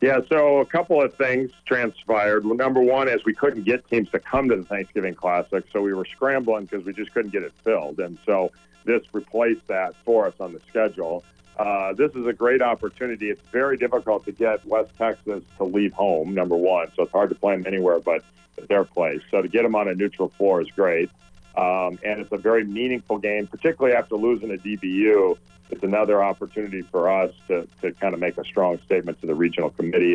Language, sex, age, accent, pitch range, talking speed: English, male, 50-69, American, 95-115 Hz, 215 wpm